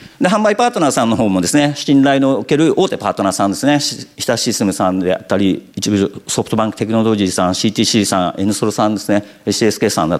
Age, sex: 50-69, male